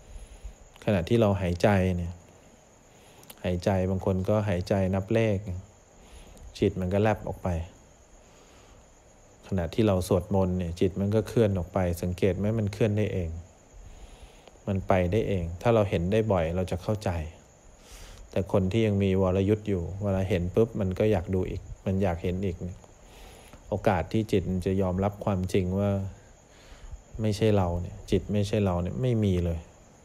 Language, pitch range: English, 90-105 Hz